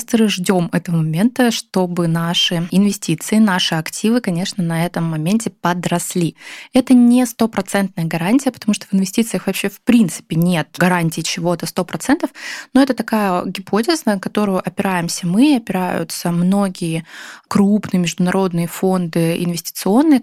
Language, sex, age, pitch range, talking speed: Russian, female, 20-39, 175-205 Hz, 125 wpm